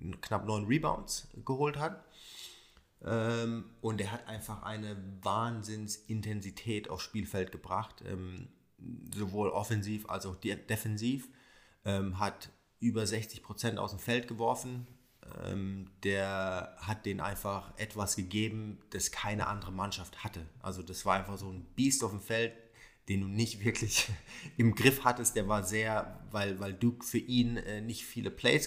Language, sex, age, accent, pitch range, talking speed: German, male, 30-49, German, 100-115 Hz, 140 wpm